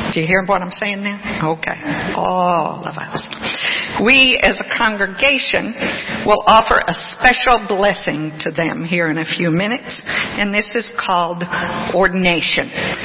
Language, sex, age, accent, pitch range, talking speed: English, female, 50-69, American, 180-235 Hz, 145 wpm